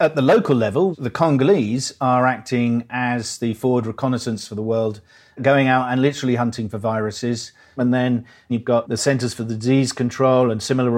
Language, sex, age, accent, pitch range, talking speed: English, male, 40-59, British, 115-135 Hz, 185 wpm